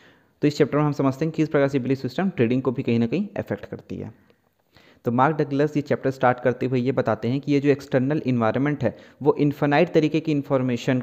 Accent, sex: native, male